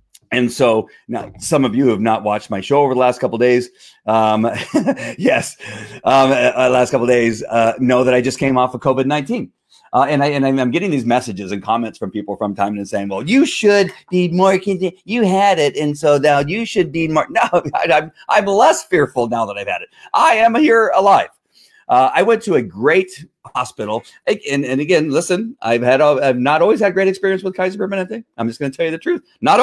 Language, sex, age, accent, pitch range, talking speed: English, male, 40-59, American, 110-180 Hz, 230 wpm